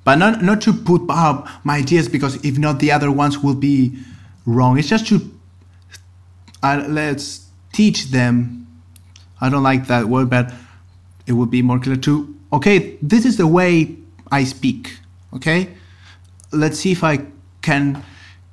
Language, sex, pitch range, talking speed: German, male, 95-145 Hz, 160 wpm